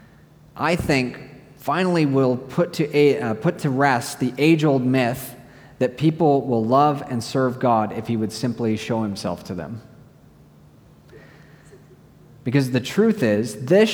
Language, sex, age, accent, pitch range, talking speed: English, male, 30-49, American, 110-145 Hz, 135 wpm